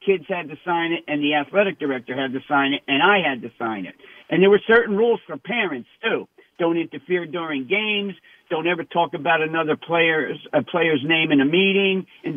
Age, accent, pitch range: 60-79, American, 150-190 Hz